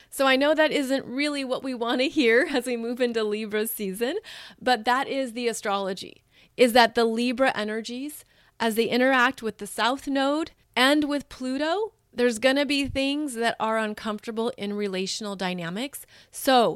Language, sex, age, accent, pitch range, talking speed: English, female, 30-49, American, 210-255 Hz, 175 wpm